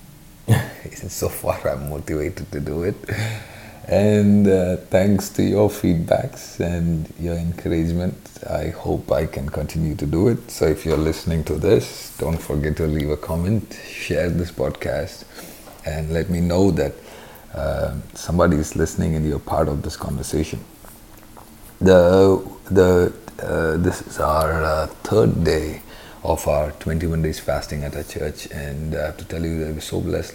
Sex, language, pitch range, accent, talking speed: male, English, 80-100 Hz, Indian, 160 wpm